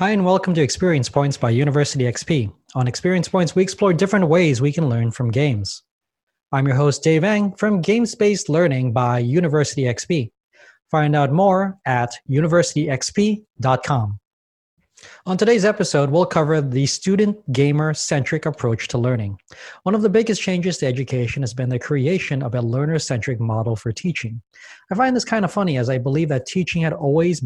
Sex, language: male, English